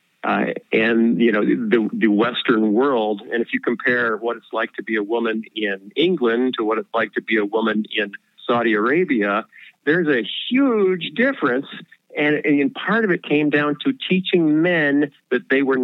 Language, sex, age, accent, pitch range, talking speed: English, male, 50-69, American, 115-145 Hz, 185 wpm